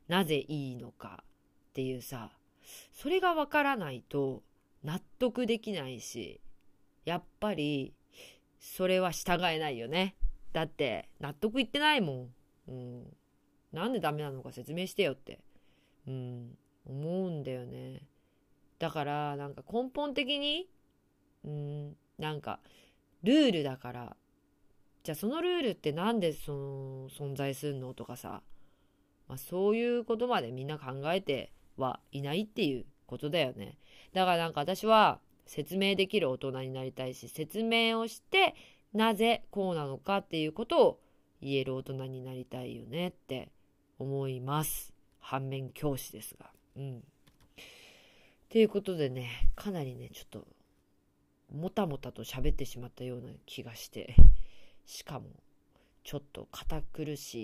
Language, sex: Japanese, female